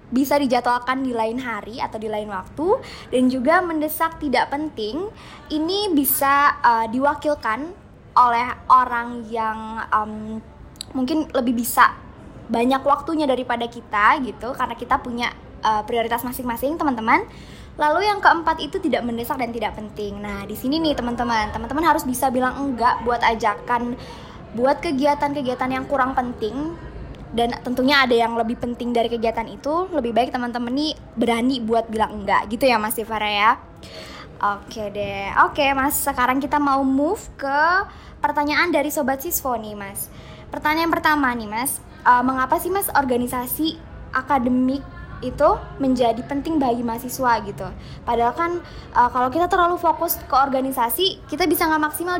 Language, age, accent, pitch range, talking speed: Indonesian, 10-29, native, 235-300 Hz, 150 wpm